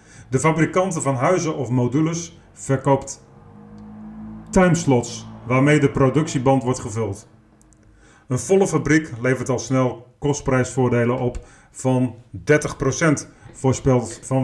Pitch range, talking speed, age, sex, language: 115-145 Hz, 105 wpm, 30-49, male, Dutch